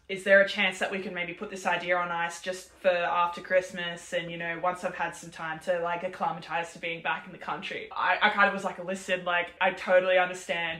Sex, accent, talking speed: female, Australian, 250 wpm